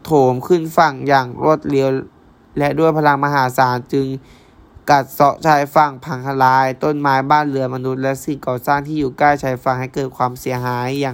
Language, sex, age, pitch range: Thai, male, 20-39, 130-145 Hz